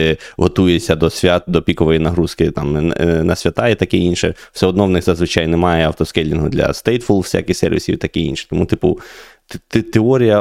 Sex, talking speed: male, 180 wpm